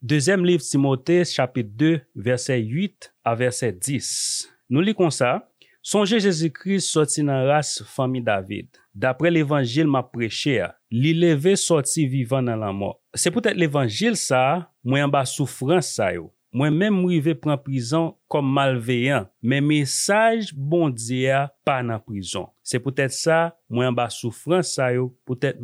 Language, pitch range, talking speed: French, 125-170 Hz, 150 wpm